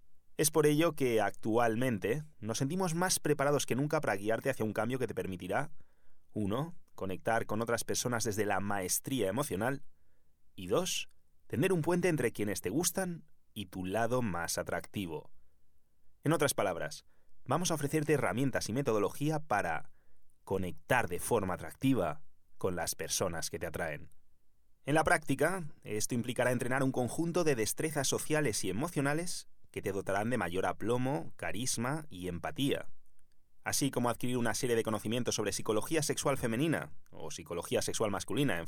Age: 30-49